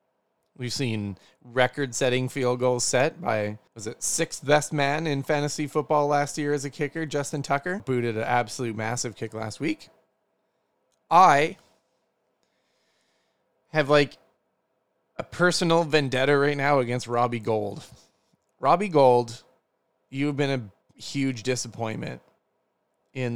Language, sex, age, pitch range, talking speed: English, male, 20-39, 120-145 Hz, 120 wpm